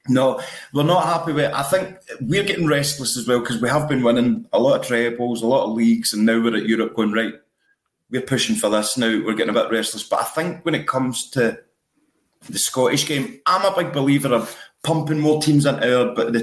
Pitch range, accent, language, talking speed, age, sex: 115-150 Hz, British, English, 230 wpm, 30-49, male